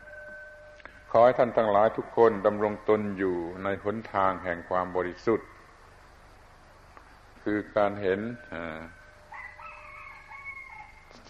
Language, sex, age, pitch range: Thai, male, 60-79, 95-115 Hz